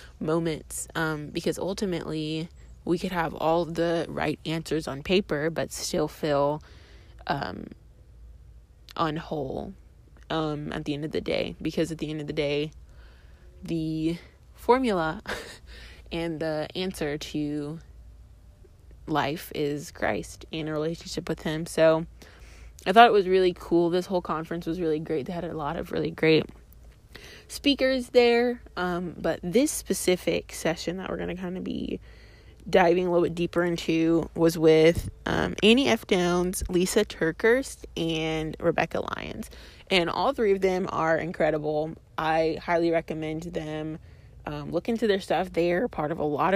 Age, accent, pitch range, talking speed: 20-39, American, 155-180 Hz, 150 wpm